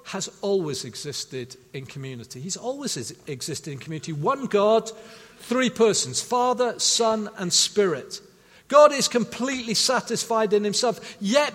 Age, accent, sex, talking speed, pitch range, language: 50-69, British, male, 130 wpm, 220-265 Hz, English